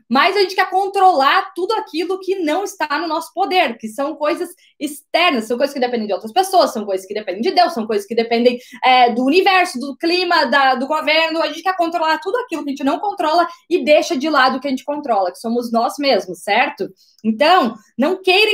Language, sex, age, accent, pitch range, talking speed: Portuguese, female, 20-39, Brazilian, 260-365 Hz, 220 wpm